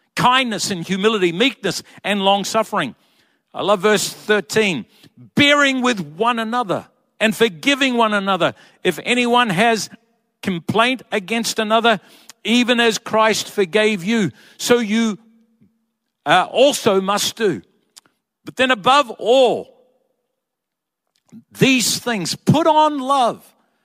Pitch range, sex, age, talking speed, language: 185-230 Hz, male, 60-79, 110 wpm, English